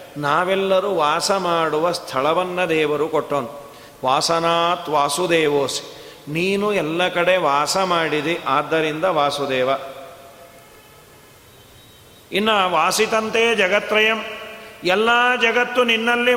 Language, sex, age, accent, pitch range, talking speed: Kannada, male, 40-59, native, 155-190 Hz, 75 wpm